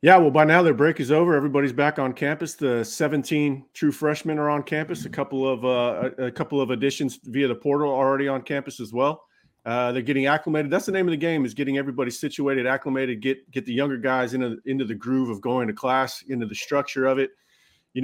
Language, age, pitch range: English, 30-49, 125-145 Hz